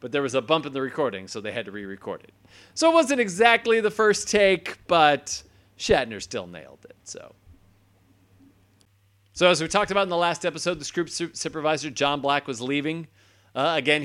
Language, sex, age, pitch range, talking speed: English, male, 30-49, 115-150 Hz, 190 wpm